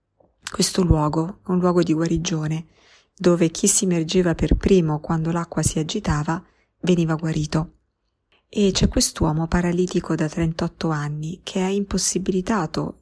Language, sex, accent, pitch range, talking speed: Italian, female, native, 160-185 Hz, 130 wpm